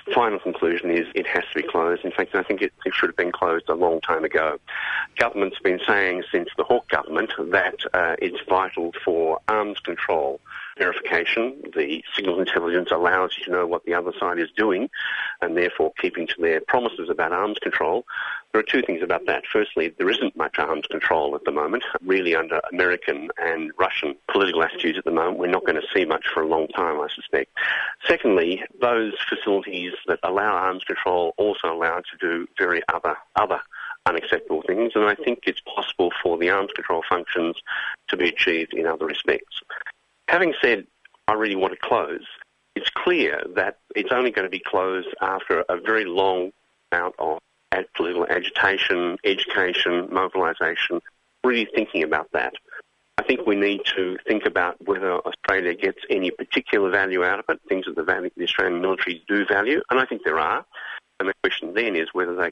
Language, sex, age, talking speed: English, male, 50-69, 185 wpm